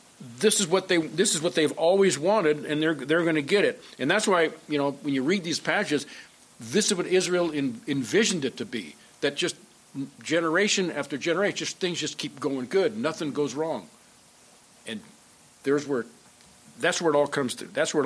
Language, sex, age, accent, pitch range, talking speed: English, male, 50-69, American, 145-195 Hz, 195 wpm